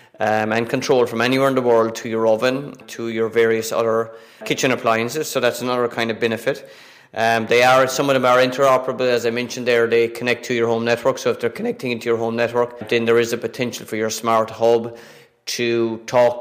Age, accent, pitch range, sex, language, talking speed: 30-49, Irish, 115-130 Hz, male, English, 210 wpm